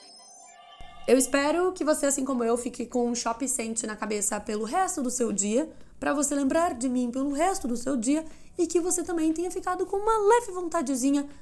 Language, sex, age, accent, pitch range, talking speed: Portuguese, female, 10-29, Brazilian, 235-305 Hz, 205 wpm